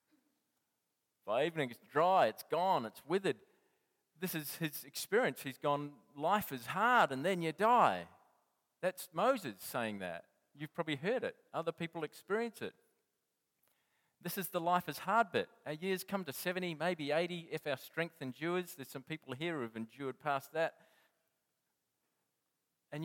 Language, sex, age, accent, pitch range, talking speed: English, male, 40-59, Australian, 125-180 Hz, 160 wpm